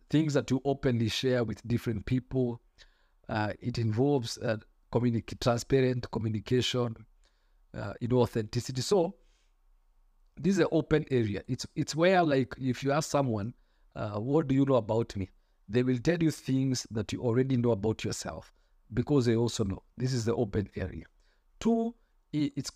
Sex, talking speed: male, 165 wpm